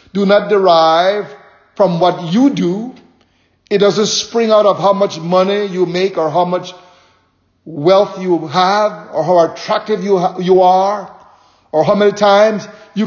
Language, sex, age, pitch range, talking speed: English, male, 50-69, 170-220 Hz, 165 wpm